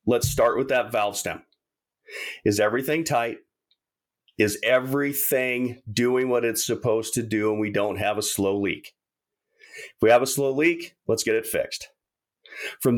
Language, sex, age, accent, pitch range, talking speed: English, male, 40-59, American, 120-160 Hz, 160 wpm